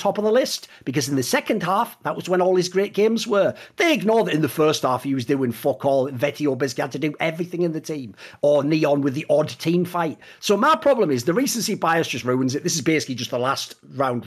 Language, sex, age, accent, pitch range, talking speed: English, male, 40-59, British, 135-210 Hz, 255 wpm